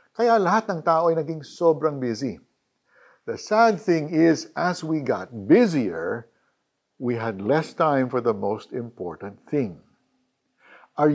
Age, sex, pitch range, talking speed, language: 50-69, male, 125-185 Hz, 140 wpm, Filipino